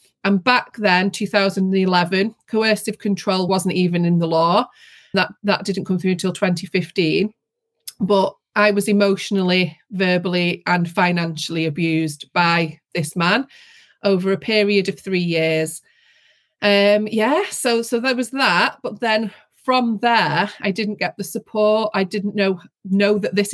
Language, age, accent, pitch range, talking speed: English, 30-49, British, 180-215 Hz, 145 wpm